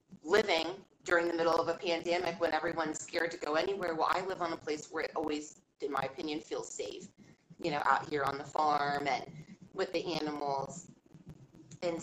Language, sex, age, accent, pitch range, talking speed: English, female, 30-49, American, 155-185 Hz, 195 wpm